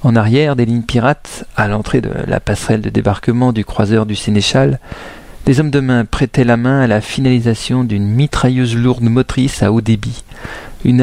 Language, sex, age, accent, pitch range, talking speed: French, male, 40-59, French, 110-130 Hz, 185 wpm